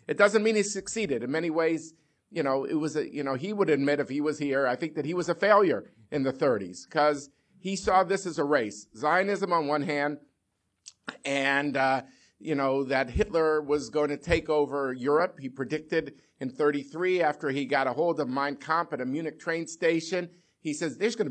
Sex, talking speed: male, 215 wpm